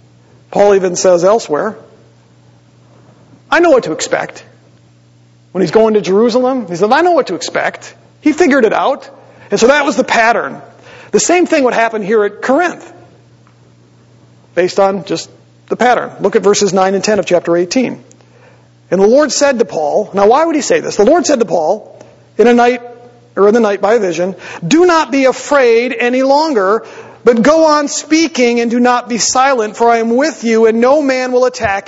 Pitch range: 160-235 Hz